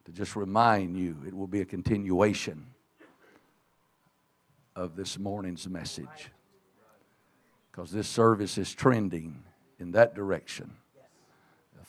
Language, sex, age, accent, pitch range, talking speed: English, male, 60-79, American, 95-115 Hz, 110 wpm